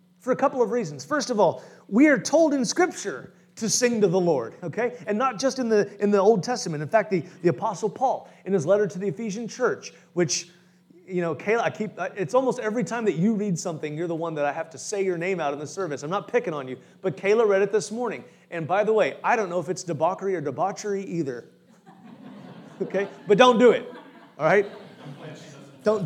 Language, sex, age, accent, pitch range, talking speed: English, male, 30-49, American, 180-260 Hz, 235 wpm